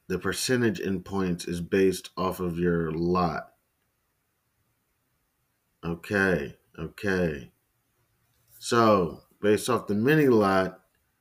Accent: American